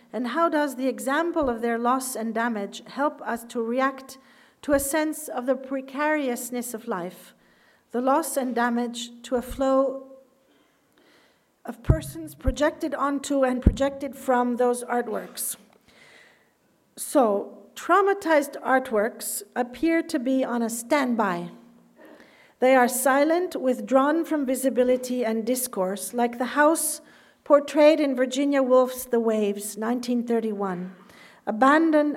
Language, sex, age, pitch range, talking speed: English, female, 50-69, 230-275 Hz, 120 wpm